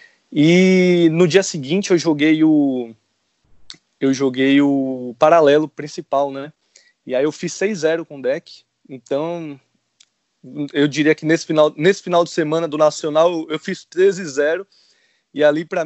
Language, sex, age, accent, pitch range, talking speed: Portuguese, male, 20-39, Brazilian, 140-180 Hz, 150 wpm